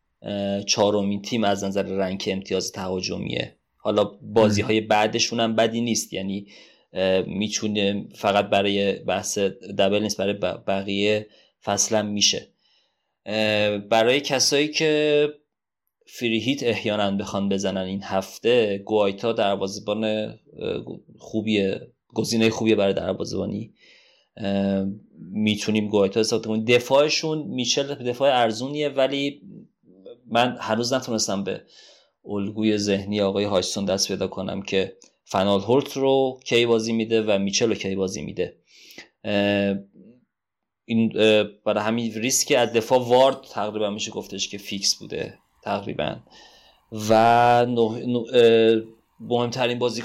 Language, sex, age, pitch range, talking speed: Persian, male, 30-49, 100-115 Hz, 110 wpm